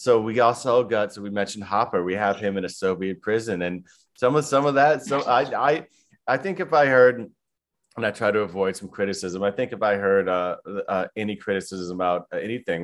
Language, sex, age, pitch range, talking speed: English, male, 30-49, 100-125 Hz, 220 wpm